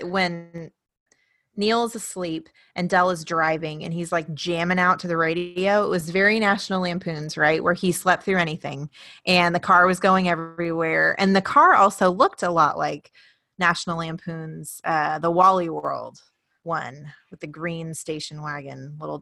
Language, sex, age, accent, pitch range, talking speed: English, female, 20-39, American, 165-200 Hz, 165 wpm